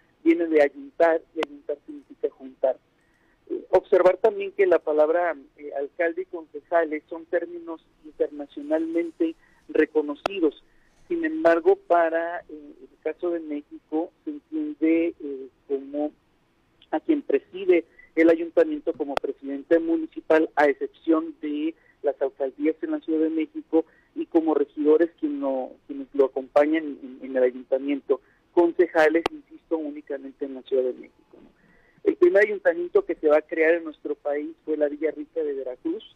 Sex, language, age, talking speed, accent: male, Spanish, 50-69, 145 wpm, Mexican